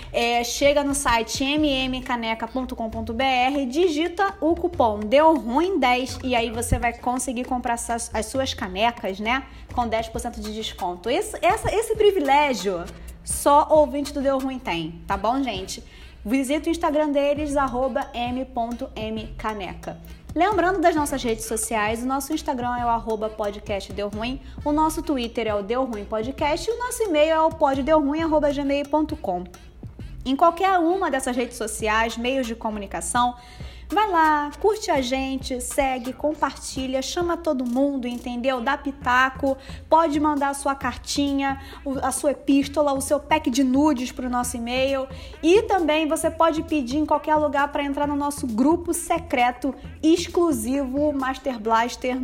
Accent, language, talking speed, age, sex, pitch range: Brazilian, Portuguese, 145 wpm, 20-39, female, 240-300 Hz